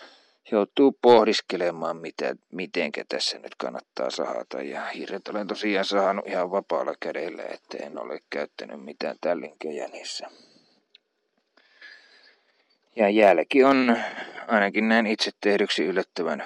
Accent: native